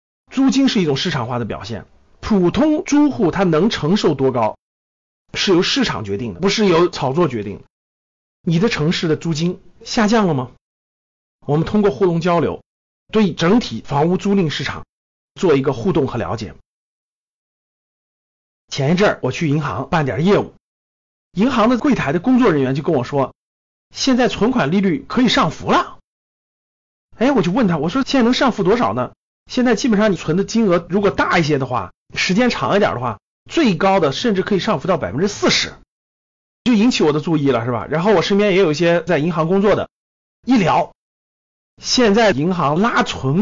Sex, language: male, Chinese